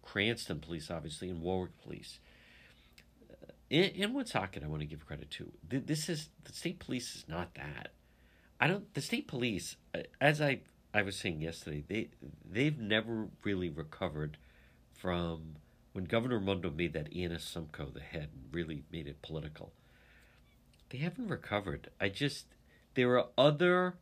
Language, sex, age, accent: English, male, 50-69, American